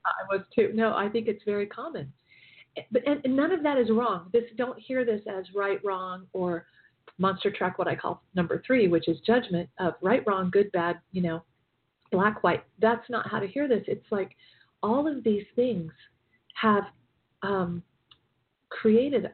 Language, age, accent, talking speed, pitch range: English, 40-59, American, 185 wpm, 180-230 Hz